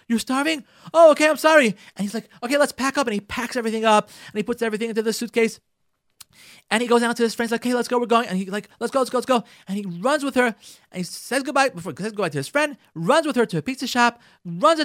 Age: 30-49